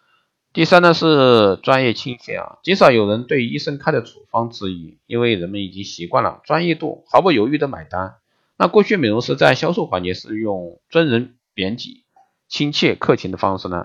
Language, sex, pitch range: Chinese, male, 95-140 Hz